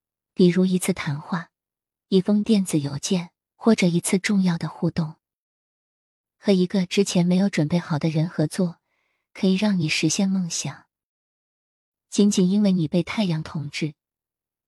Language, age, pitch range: Chinese, 20-39, 160-195 Hz